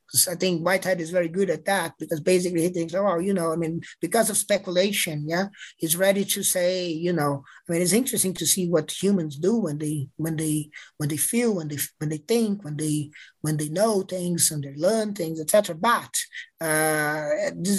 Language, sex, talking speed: English, male, 210 wpm